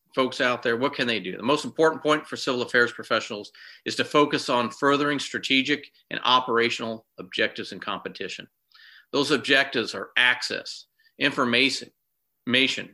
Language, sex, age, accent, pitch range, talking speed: English, male, 50-69, American, 115-145 Hz, 145 wpm